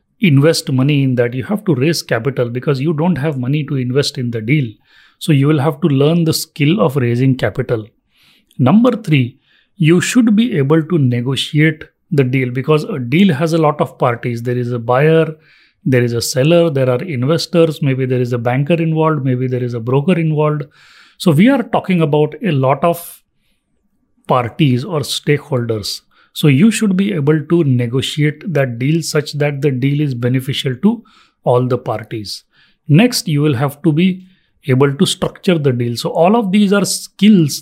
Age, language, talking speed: 30-49, English, 190 wpm